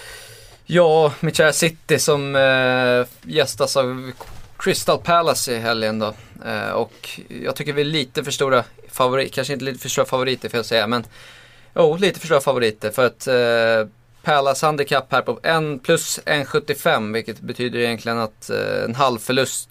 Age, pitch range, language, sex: 20-39, 110-130 Hz, Swedish, male